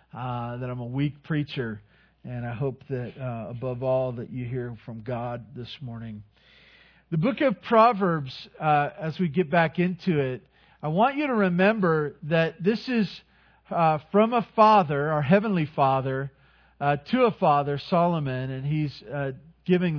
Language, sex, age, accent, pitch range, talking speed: English, male, 40-59, American, 135-190 Hz, 165 wpm